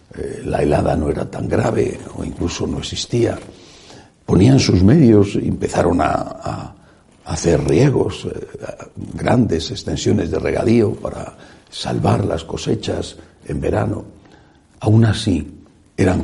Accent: Spanish